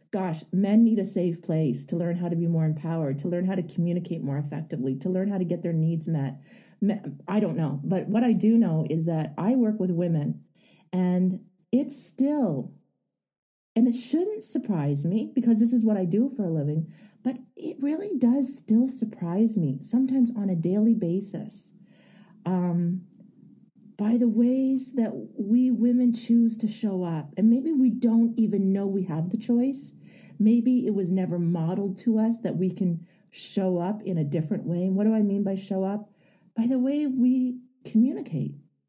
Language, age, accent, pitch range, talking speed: English, 40-59, American, 180-230 Hz, 185 wpm